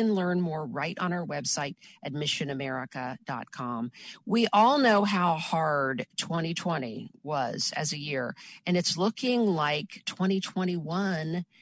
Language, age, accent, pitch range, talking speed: English, 50-69, American, 155-205 Hz, 115 wpm